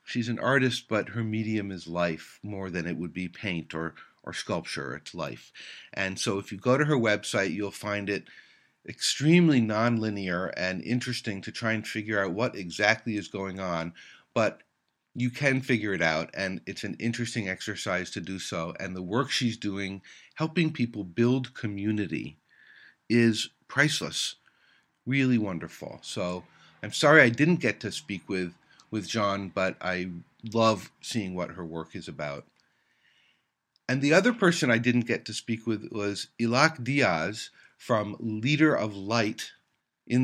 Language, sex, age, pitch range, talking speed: English, male, 50-69, 95-120 Hz, 165 wpm